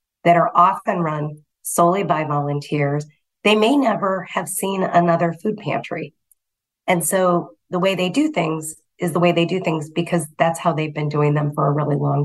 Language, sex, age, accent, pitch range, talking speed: English, female, 30-49, American, 150-180 Hz, 190 wpm